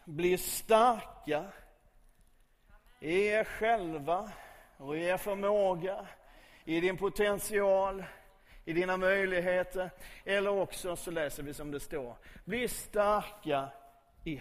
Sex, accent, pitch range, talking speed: male, native, 165-215 Hz, 110 wpm